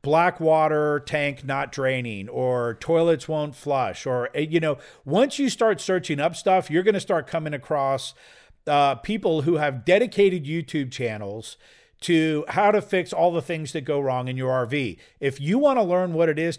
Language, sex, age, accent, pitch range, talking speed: English, male, 50-69, American, 130-165 Hz, 190 wpm